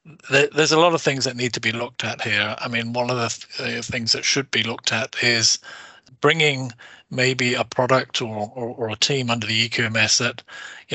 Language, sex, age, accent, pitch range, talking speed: English, male, 40-59, British, 115-130 Hz, 215 wpm